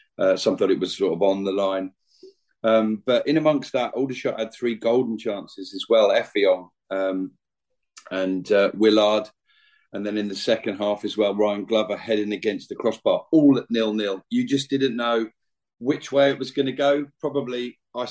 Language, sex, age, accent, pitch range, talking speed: English, male, 40-59, British, 105-135 Hz, 190 wpm